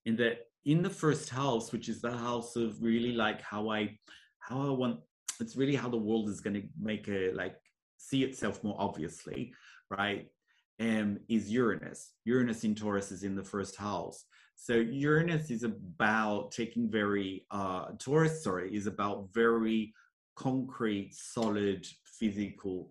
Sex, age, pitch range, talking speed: male, 30-49, 100-125 Hz, 155 wpm